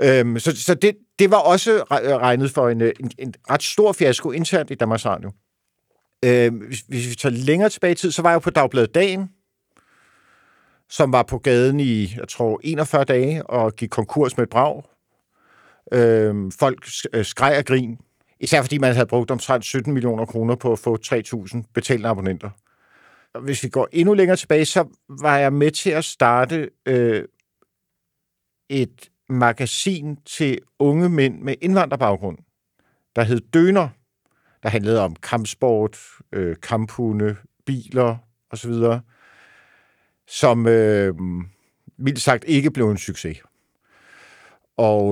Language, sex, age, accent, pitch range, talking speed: Danish, male, 50-69, native, 115-145 Hz, 150 wpm